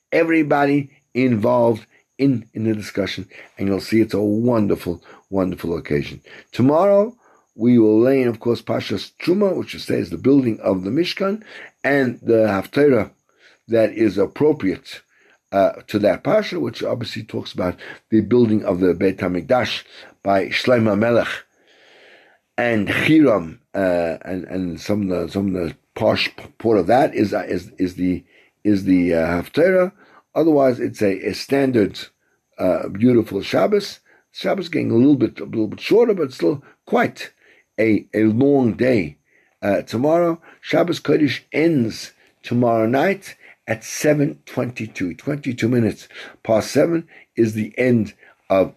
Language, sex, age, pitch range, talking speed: English, male, 50-69, 100-140 Hz, 145 wpm